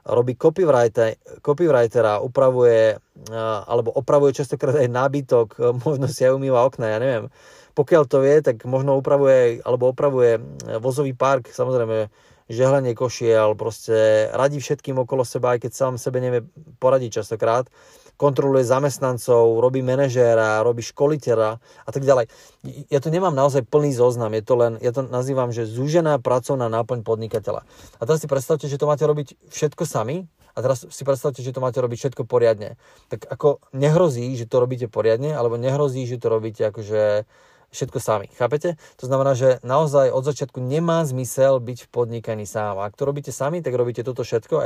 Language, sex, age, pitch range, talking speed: Slovak, male, 30-49, 115-140 Hz, 170 wpm